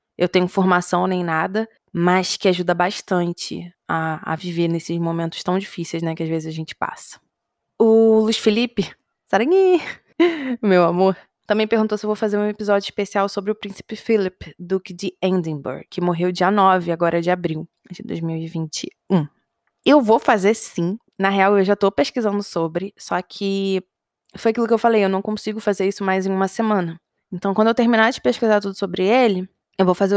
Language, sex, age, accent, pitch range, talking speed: Portuguese, female, 20-39, Brazilian, 180-215 Hz, 185 wpm